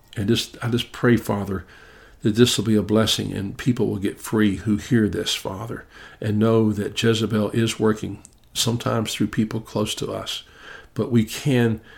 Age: 50-69